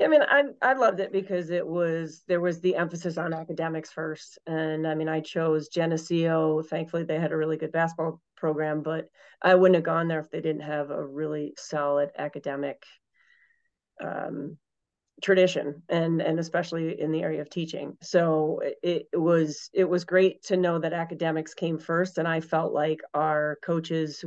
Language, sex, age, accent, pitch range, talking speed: English, female, 30-49, American, 155-170 Hz, 180 wpm